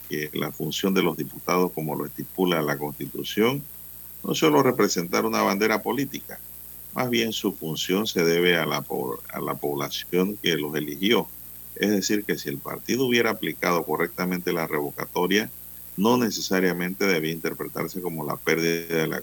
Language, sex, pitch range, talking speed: Spanish, male, 70-90 Hz, 160 wpm